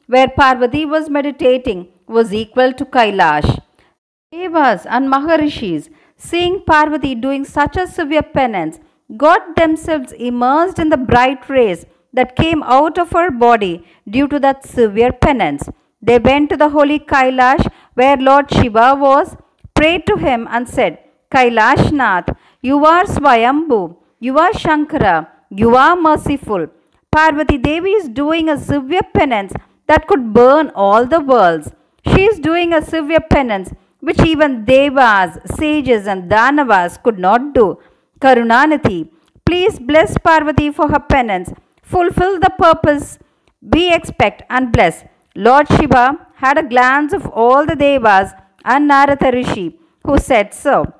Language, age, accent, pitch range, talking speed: Tamil, 50-69, native, 240-310 Hz, 140 wpm